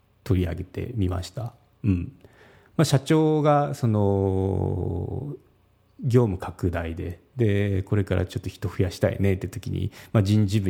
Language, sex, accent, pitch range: Japanese, male, native, 95-125 Hz